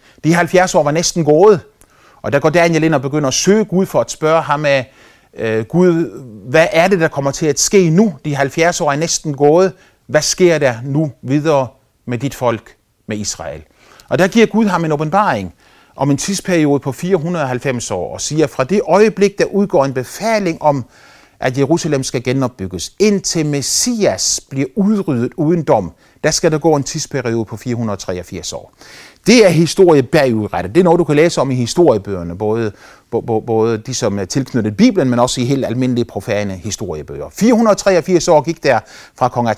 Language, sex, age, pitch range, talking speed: Danish, male, 30-49, 120-175 Hz, 185 wpm